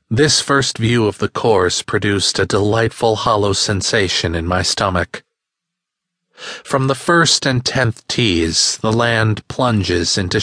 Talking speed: 140 wpm